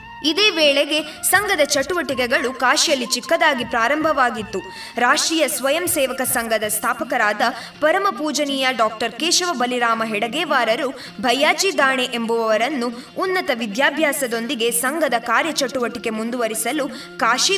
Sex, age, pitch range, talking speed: female, 20-39, 230-300 Hz, 90 wpm